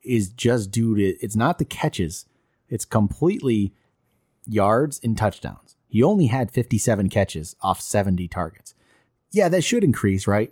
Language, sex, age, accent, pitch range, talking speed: English, male, 30-49, American, 105-130 Hz, 150 wpm